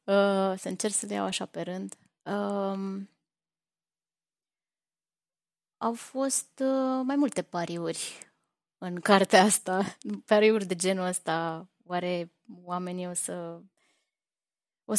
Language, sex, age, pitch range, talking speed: Romanian, female, 20-39, 180-215 Hz, 110 wpm